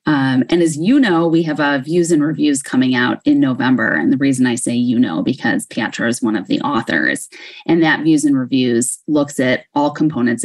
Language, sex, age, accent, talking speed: English, female, 20-39, American, 220 wpm